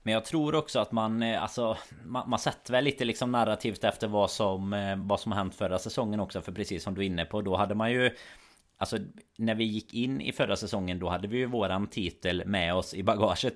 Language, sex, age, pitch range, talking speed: Swedish, male, 30-49, 90-115 Hz, 235 wpm